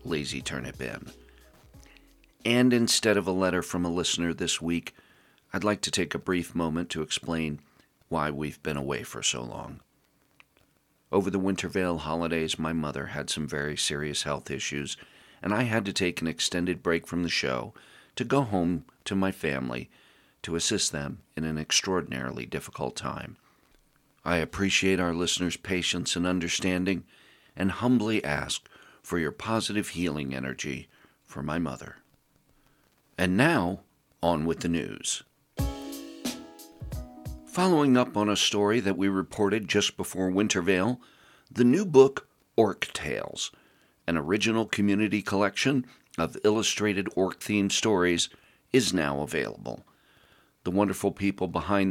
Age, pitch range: 40-59, 80-105 Hz